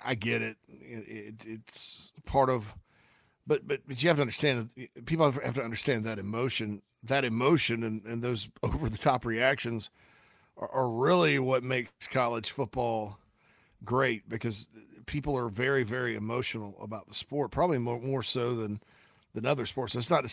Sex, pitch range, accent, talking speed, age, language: male, 115-140 Hz, American, 175 wpm, 40-59, English